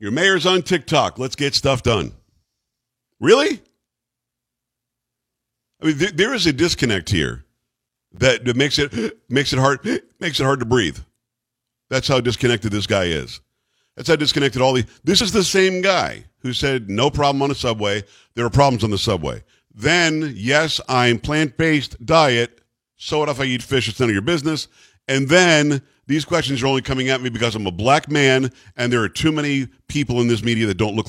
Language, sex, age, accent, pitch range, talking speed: English, male, 50-69, American, 115-145 Hz, 195 wpm